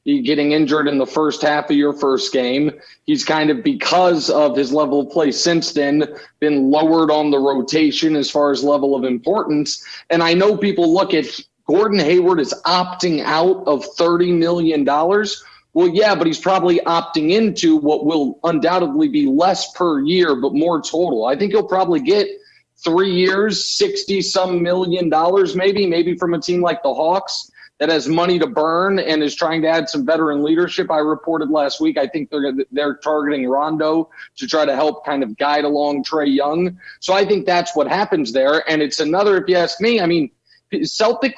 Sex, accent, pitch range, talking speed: male, American, 150-205 Hz, 190 wpm